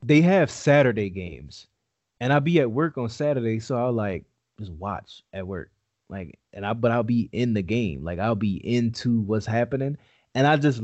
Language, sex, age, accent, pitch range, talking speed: English, male, 20-39, American, 110-135 Hz, 200 wpm